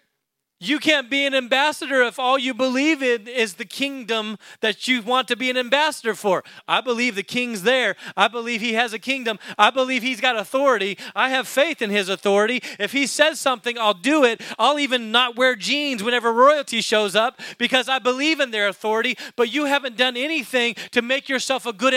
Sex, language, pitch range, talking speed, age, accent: male, English, 190-260 Hz, 205 wpm, 30-49, American